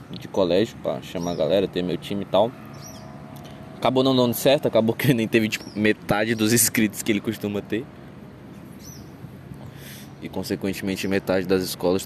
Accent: Brazilian